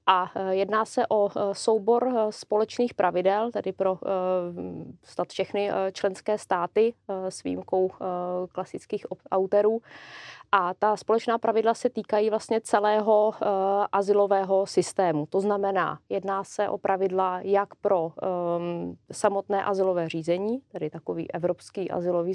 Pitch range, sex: 180-200 Hz, female